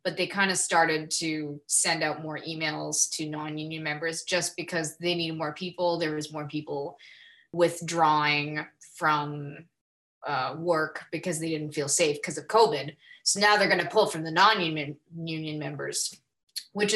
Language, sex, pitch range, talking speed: English, female, 160-190 Hz, 165 wpm